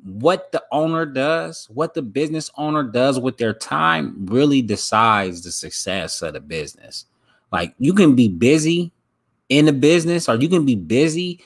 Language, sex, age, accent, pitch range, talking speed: English, male, 20-39, American, 105-150 Hz, 170 wpm